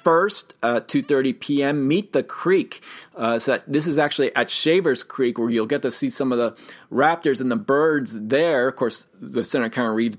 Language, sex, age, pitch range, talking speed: English, male, 30-49, 115-150 Hz, 210 wpm